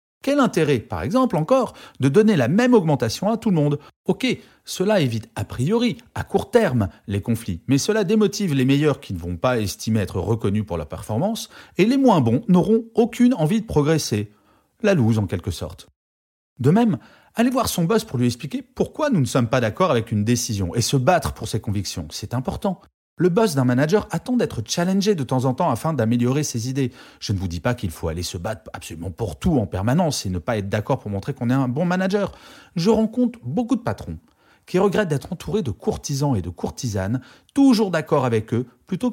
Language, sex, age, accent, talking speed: French, male, 40-59, French, 215 wpm